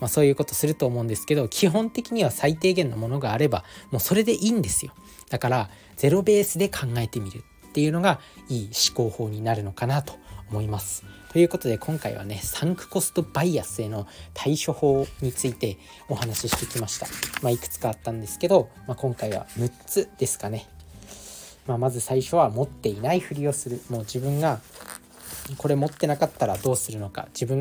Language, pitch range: Japanese, 105-150 Hz